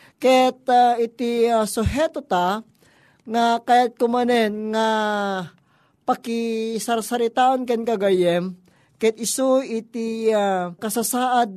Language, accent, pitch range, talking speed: Filipino, native, 200-245 Hz, 110 wpm